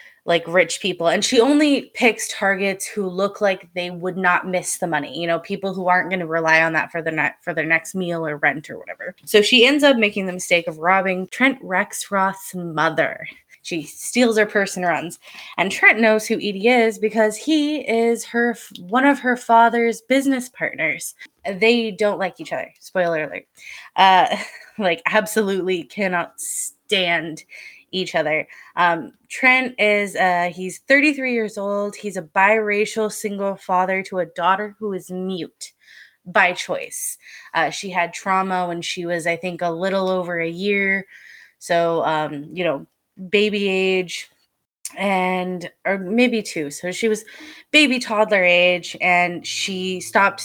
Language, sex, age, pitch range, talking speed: English, female, 20-39, 175-220 Hz, 165 wpm